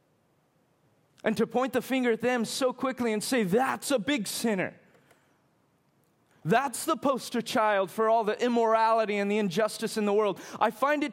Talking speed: 175 wpm